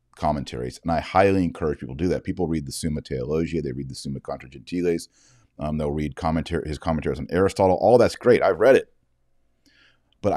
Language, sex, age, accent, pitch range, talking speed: English, male, 40-59, American, 80-110 Hz, 195 wpm